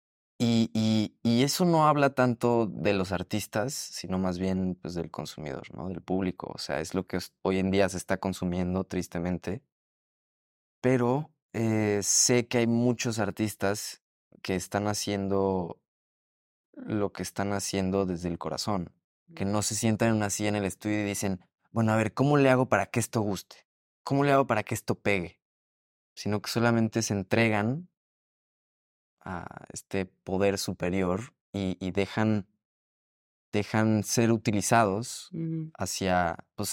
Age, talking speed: 20-39, 150 wpm